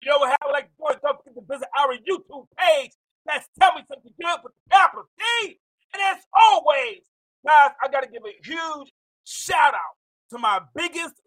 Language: English